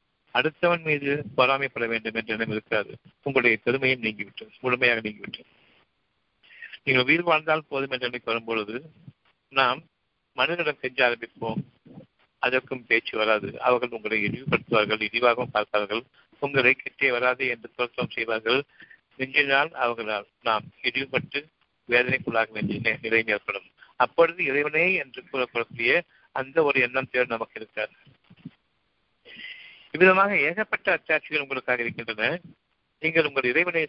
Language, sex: Tamil, male